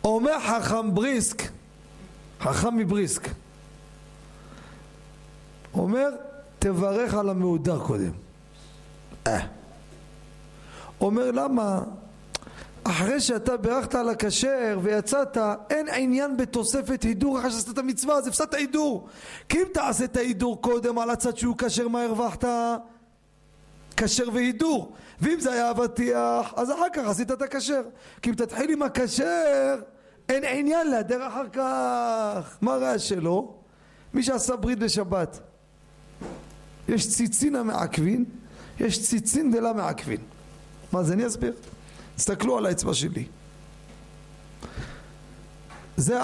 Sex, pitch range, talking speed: male, 200-255 Hz, 115 wpm